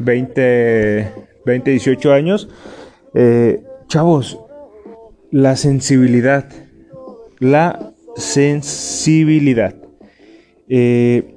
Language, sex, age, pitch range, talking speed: Spanish, male, 30-49, 110-155 Hz, 60 wpm